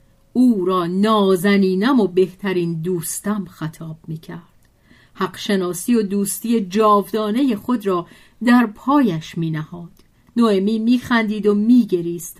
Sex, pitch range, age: female, 185-280 Hz, 40-59